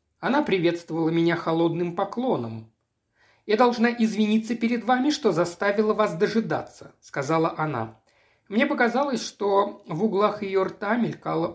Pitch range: 170-230 Hz